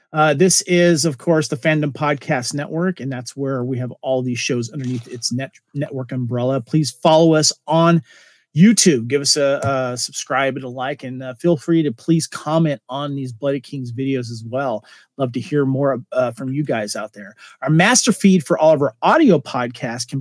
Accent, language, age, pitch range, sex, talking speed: American, English, 40-59, 130-165 Hz, male, 205 wpm